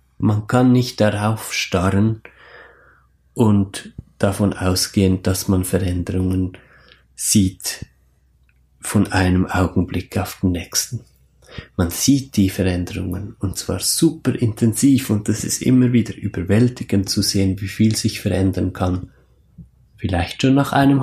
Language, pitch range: German, 90-115 Hz